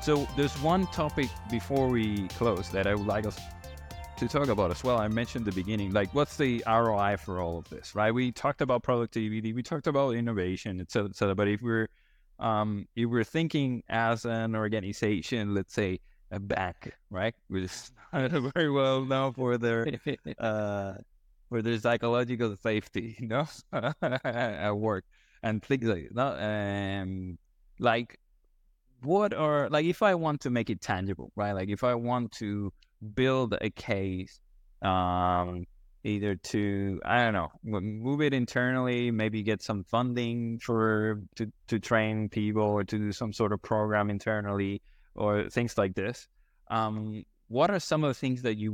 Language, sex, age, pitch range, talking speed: English, male, 20-39, 95-120 Hz, 170 wpm